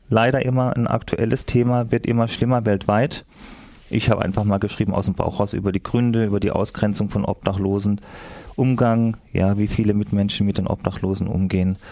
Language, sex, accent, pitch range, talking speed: German, male, German, 95-110 Hz, 175 wpm